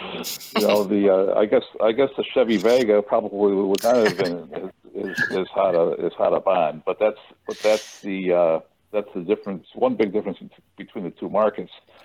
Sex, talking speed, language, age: male, 195 wpm, English, 60-79